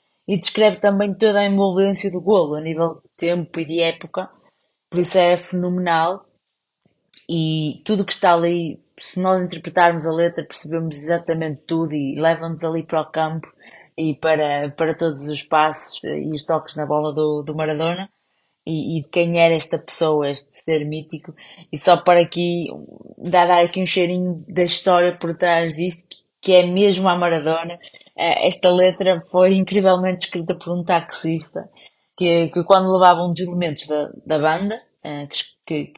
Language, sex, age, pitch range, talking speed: Portuguese, female, 20-39, 160-190 Hz, 165 wpm